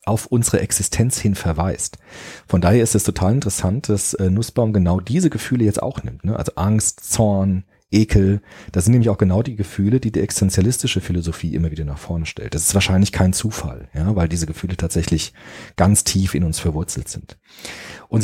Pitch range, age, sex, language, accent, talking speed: 85-115 Hz, 40-59, male, German, German, 180 wpm